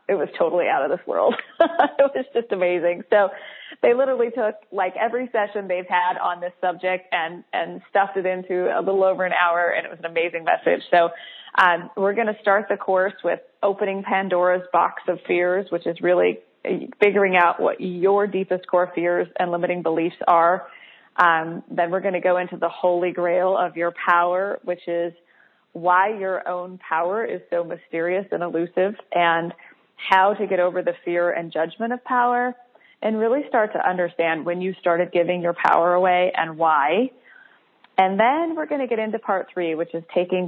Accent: American